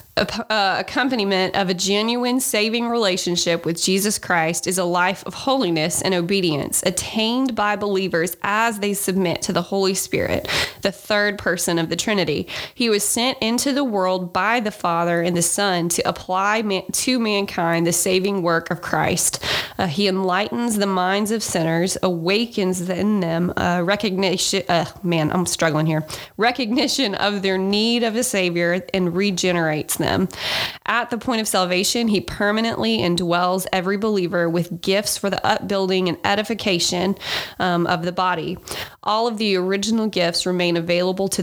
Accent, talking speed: American, 160 wpm